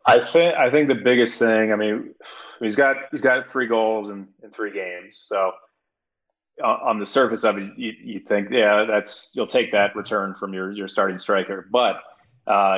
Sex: male